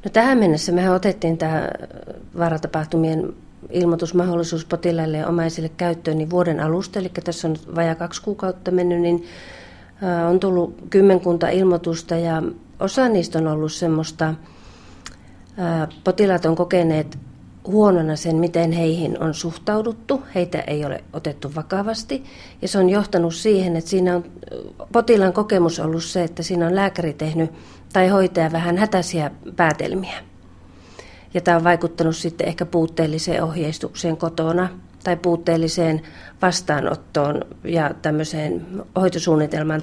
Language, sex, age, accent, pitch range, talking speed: Finnish, female, 40-59, native, 160-180 Hz, 120 wpm